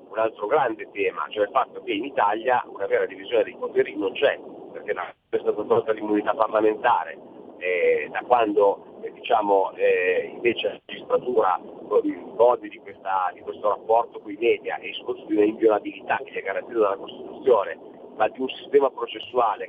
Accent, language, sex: native, Italian, male